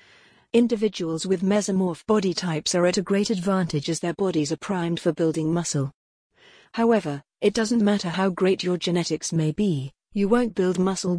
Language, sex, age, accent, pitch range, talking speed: English, female, 40-59, British, 170-205 Hz, 170 wpm